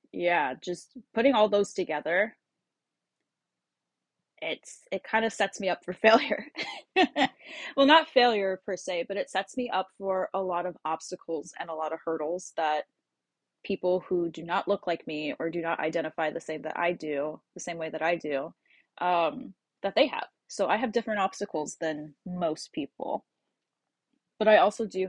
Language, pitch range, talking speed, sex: English, 165-205 Hz, 175 wpm, female